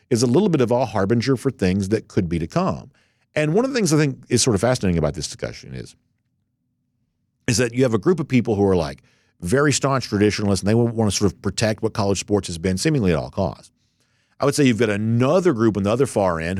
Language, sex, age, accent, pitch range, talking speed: English, male, 50-69, American, 95-125 Hz, 255 wpm